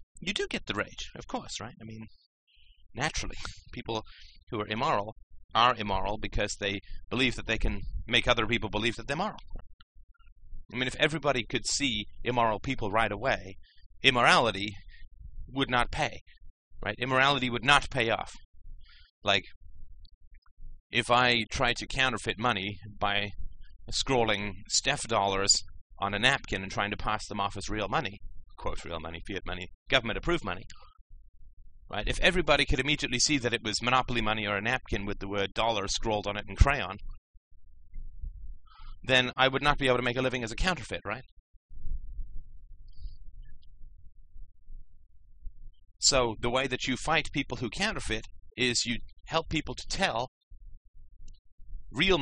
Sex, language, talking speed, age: male, English, 155 wpm, 30-49